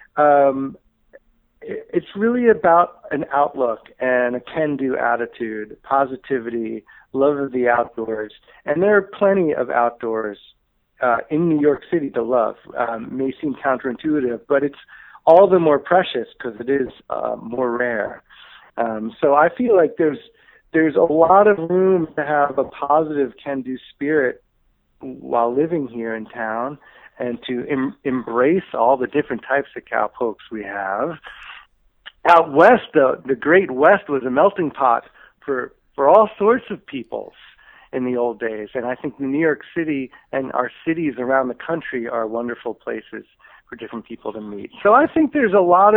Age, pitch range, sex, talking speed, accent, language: 40-59, 125-170 Hz, male, 165 wpm, American, English